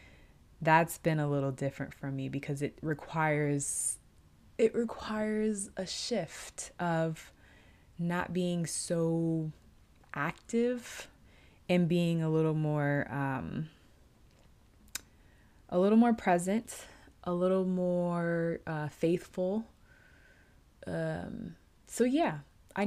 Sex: female